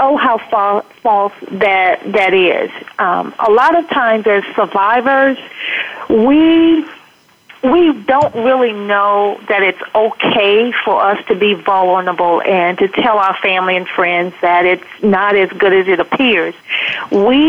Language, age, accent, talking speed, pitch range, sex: English, 40-59, American, 145 wpm, 195-250 Hz, female